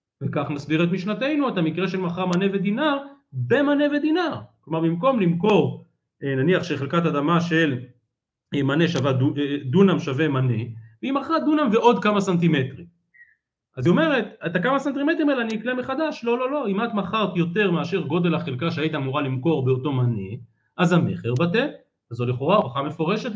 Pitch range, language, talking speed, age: 135-200 Hz, Hebrew, 155 wpm, 40-59